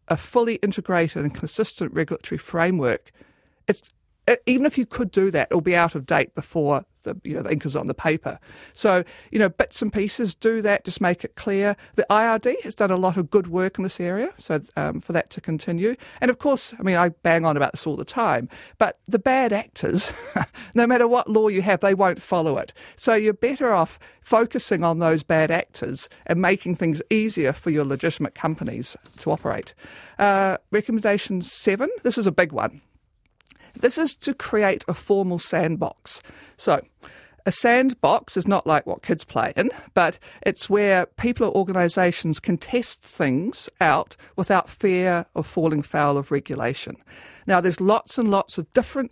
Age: 50-69